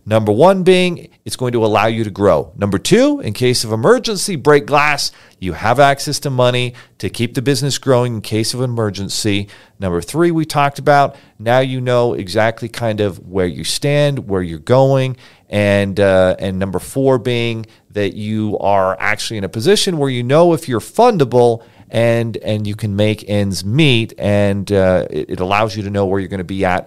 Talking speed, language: 200 wpm, English